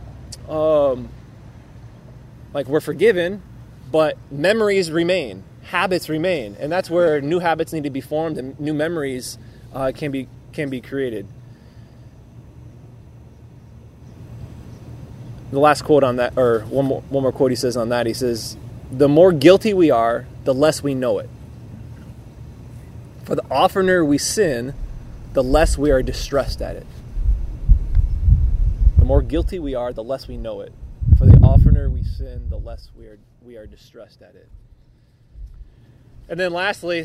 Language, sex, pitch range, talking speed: English, male, 120-160 Hz, 150 wpm